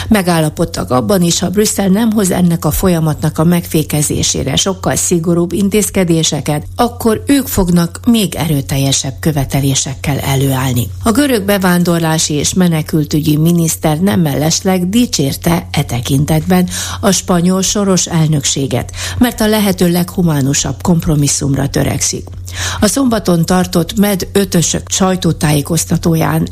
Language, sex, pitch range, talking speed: Hungarian, female, 150-190 Hz, 110 wpm